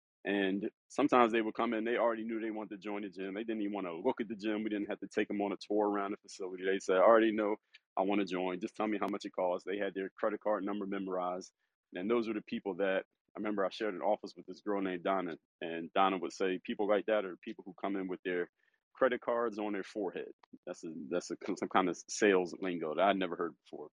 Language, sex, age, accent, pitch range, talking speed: English, male, 30-49, American, 100-115 Hz, 275 wpm